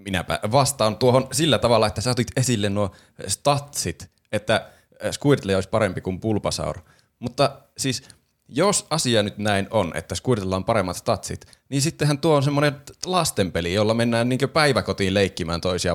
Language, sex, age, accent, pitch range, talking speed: Finnish, male, 20-39, native, 95-125 Hz, 150 wpm